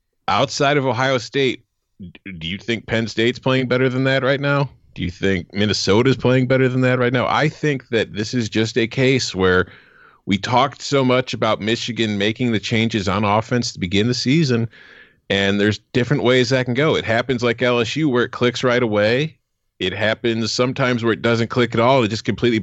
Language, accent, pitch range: English, American, 110-130 Hz